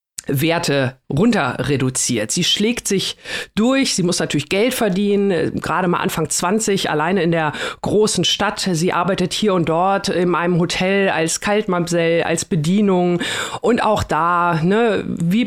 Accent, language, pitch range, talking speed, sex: German, German, 165-205 Hz, 145 wpm, female